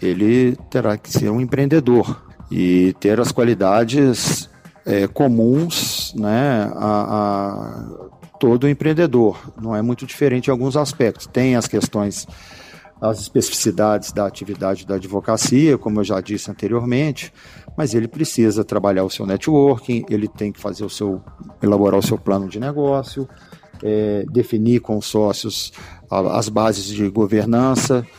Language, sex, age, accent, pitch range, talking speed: Portuguese, male, 50-69, Brazilian, 105-135 Hz, 140 wpm